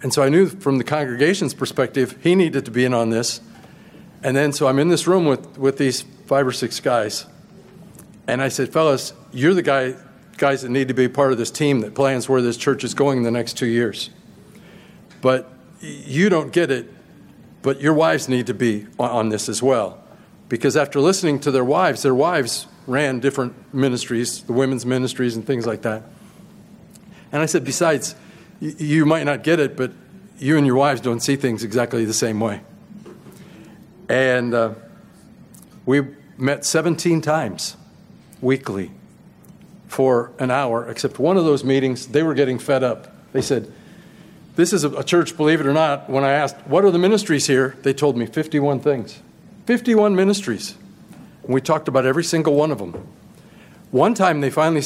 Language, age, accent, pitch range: English, 40-59, American, 125-170 Hz